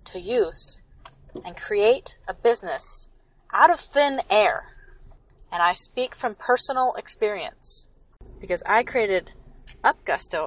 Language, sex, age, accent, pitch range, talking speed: English, female, 30-49, American, 170-230 Hz, 115 wpm